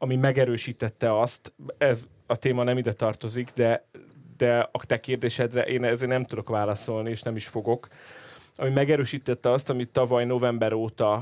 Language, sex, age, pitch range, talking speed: Hungarian, male, 30-49, 110-125 Hz, 160 wpm